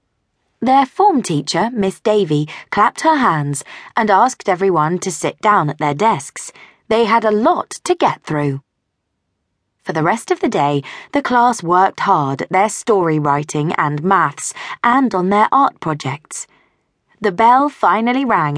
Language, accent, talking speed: English, British, 160 wpm